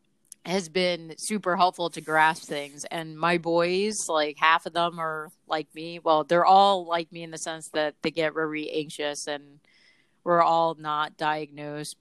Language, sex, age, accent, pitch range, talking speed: English, female, 30-49, American, 155-175 Hz, 175 wpm